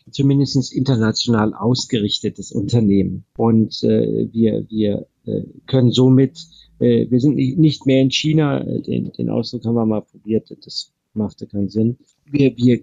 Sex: male